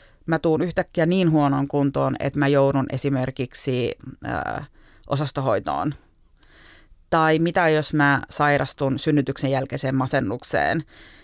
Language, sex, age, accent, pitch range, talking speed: Finnish, female, 30-49, native, 135-160 Hz, 105 wpm